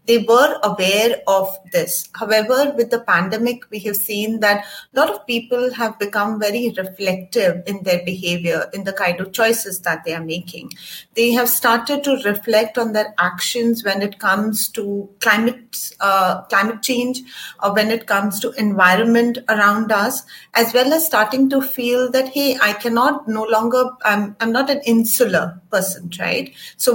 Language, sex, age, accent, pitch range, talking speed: English, female, 30-49, Indian, 195-240 Hz, 170 wpm